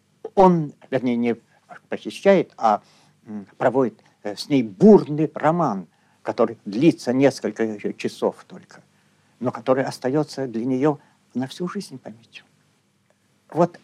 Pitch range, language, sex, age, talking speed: 125-180 Hz, Russian, male, 60-79, 110 wpm